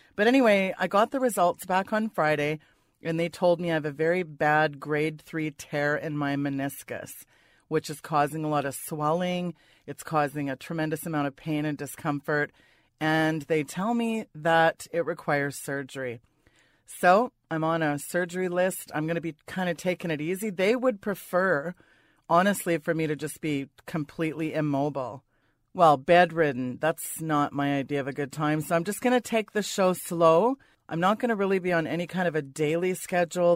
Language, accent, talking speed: English, American, 190 wpm